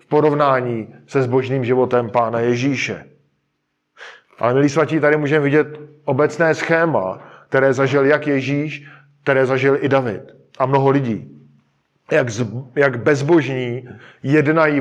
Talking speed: 115 wpm